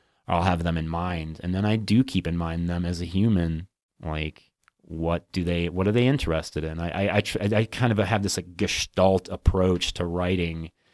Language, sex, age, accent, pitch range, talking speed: English, male, 30-49, American, 85-105 Hz, 210 wpm